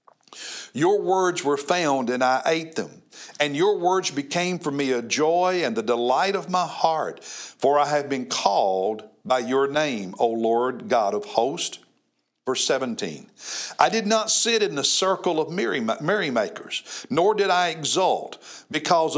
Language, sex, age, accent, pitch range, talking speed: English, male, 60-79, American, 150-205 Hz, 165 wpm